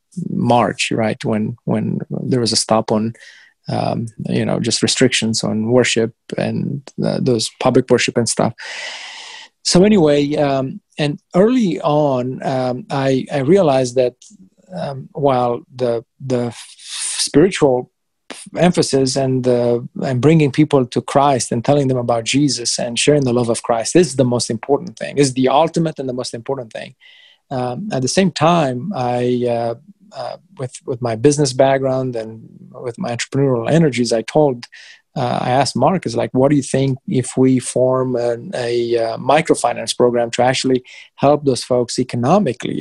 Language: English